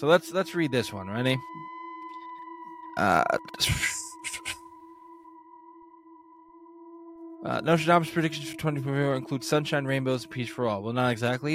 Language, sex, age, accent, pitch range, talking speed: English, male, 20-39, American, 120-165 Hz, 120 wpm